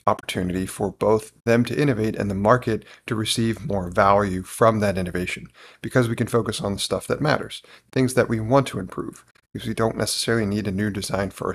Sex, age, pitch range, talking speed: male, 40-59, 95-125 Hz, 215 wpm